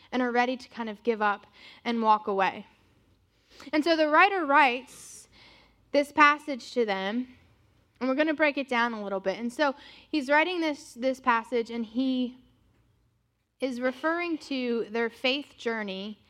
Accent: American